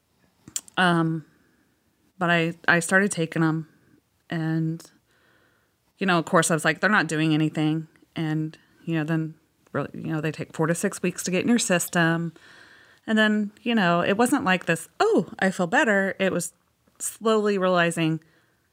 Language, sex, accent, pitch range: English, female, American, 160-205 Hz